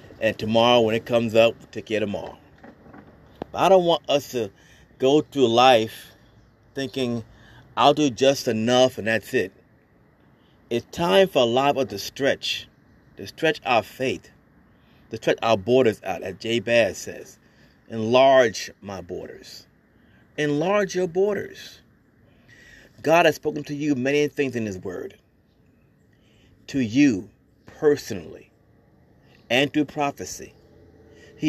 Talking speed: 140 wpm